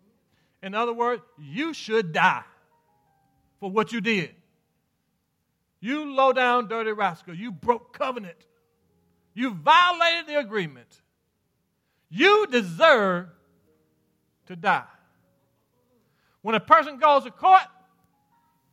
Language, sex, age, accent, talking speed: English, male, 50-69, American, 100 wpm